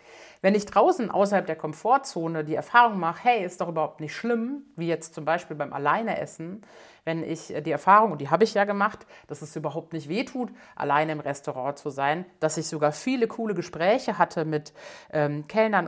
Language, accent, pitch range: German, German, 155-205 Hz